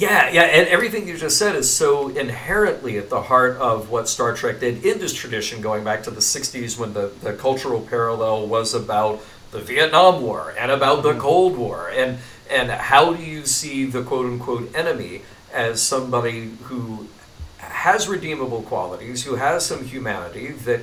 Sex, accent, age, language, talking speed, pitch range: male, American, 50-69, English, 180 wpm, 110-140 Hz